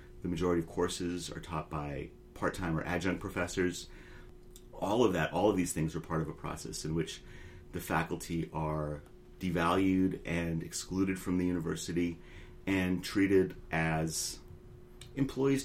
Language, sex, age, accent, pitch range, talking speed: English, male, 30-49, American, 80-95 Hz, 145 wpm